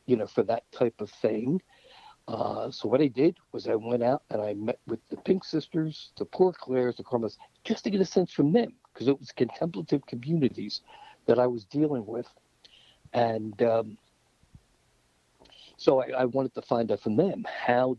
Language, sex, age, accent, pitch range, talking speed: English, male, 60-79, American, 110-155 Hz, 190 wpm